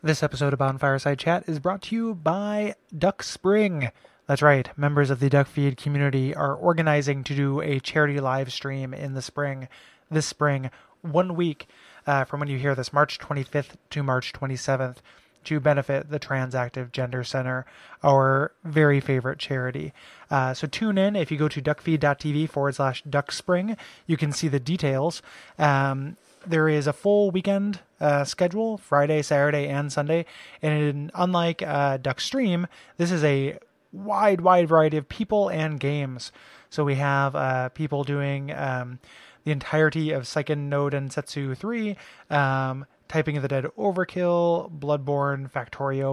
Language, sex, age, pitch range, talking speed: English, male, 20-39, 140-165 Hz, 160 wpm